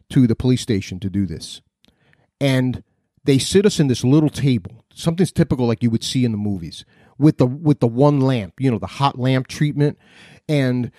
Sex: male